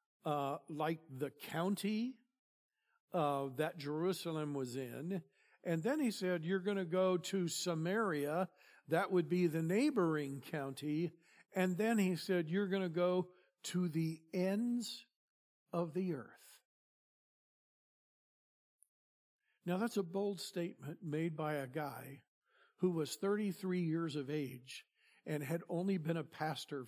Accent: American